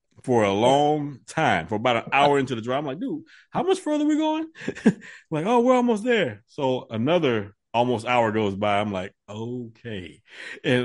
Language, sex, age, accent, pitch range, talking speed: English, male, 30-49, American, 95-135 Hz, 195 wpm